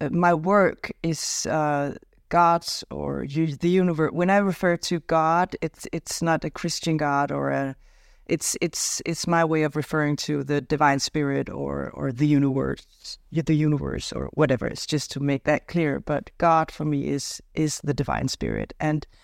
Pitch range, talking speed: 150-190 Hz, 180 wpm